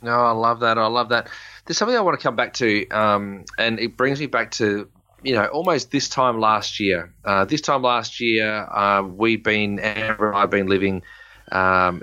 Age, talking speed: 20-39, 215 wpm